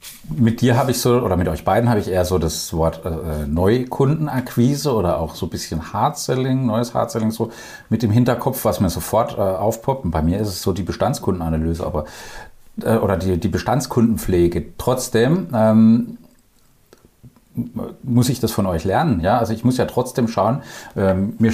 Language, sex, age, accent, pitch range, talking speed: German, male, 40-59, German, 90-120 Hz, 180 wpm